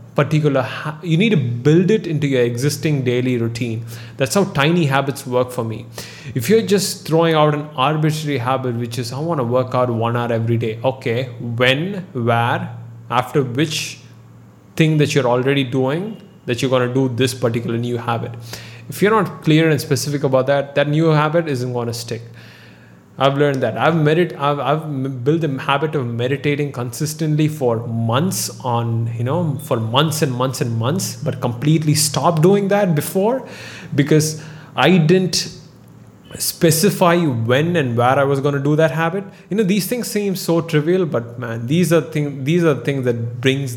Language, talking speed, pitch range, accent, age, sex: English, 180 wpm, 125-160 Hz, Indian, 20-39, male